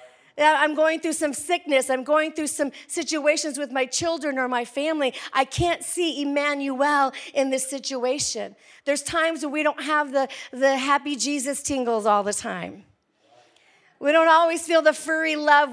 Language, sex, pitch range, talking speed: English, female, 255-325 Hz, 170 wpm